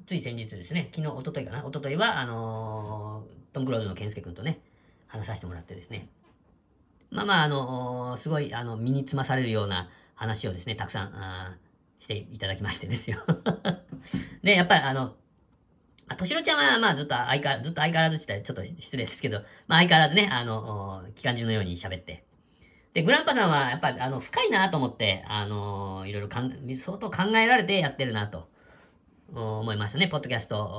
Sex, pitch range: female, 105-145 Hz